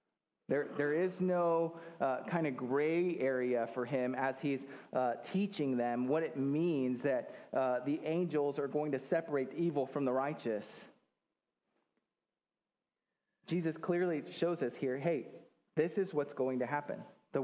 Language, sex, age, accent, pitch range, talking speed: English, male, 30-49, American, 135-180 Hz, 150 wpm